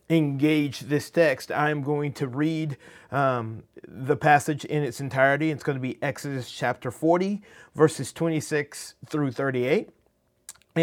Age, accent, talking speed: 30-49, American, 135 wpm